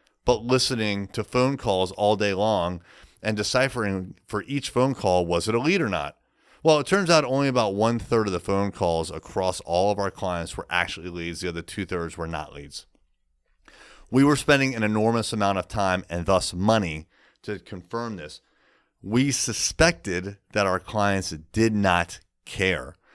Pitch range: 95-125 Hz